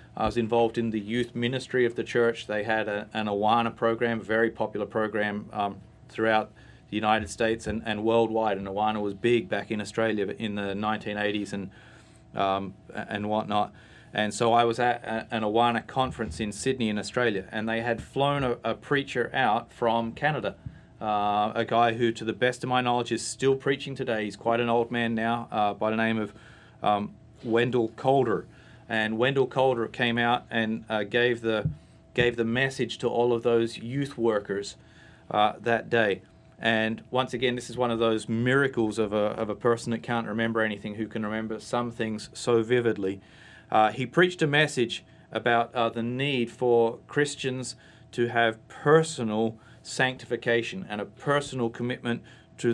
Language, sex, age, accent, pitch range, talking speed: English, male, 30-49, Australian, 110-120 Hz, 175 wpm